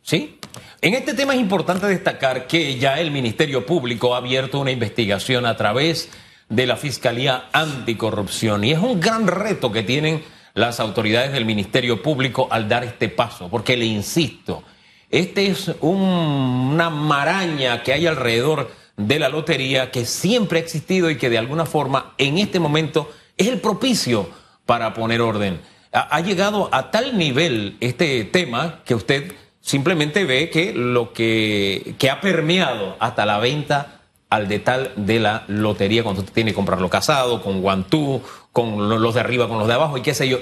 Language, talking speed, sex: Spanish, 170 wpm, male